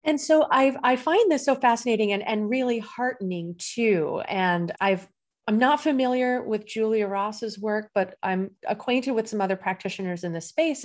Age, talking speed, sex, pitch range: 30-49, 175 wpm, female, 185-230 Hz